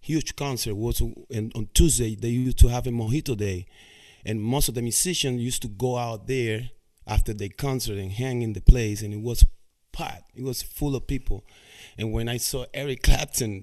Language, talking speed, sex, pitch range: English, 200 wpm, male, 110-135 Hz